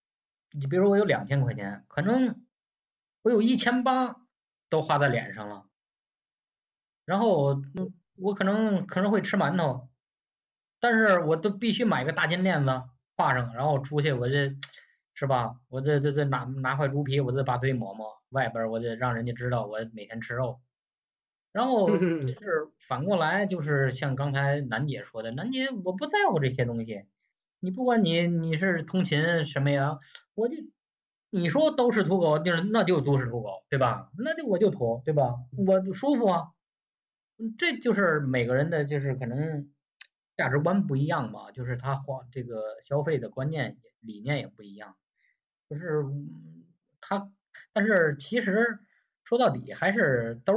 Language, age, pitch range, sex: Chinese, 10-29, 125-190 Hz, male